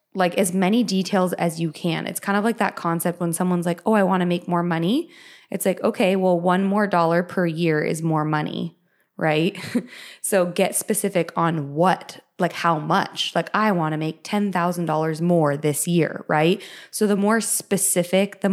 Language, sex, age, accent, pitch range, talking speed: English, female, 20-39, American, 170-200 Hz, 190 wpm